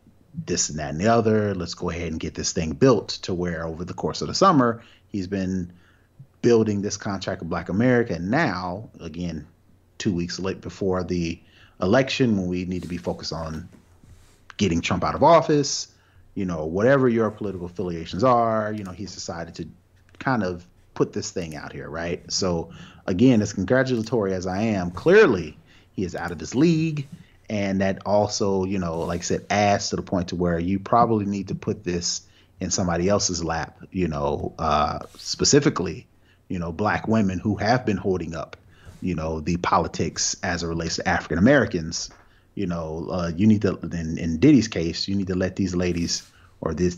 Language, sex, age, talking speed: English, male, 30-49, 190 wpm